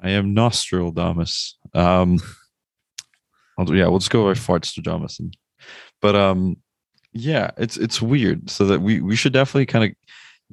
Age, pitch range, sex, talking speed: 20-39, 85-105 Hz, male, 165 wpm